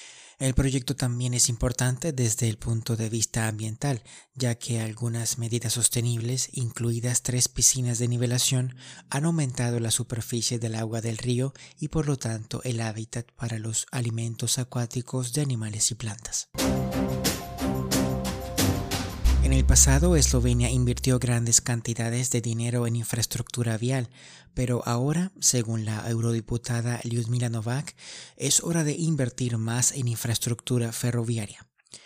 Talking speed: 130 wpm